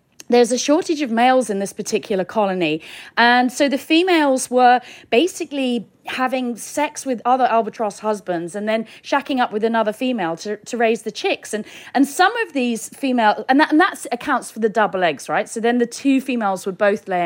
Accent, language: British, English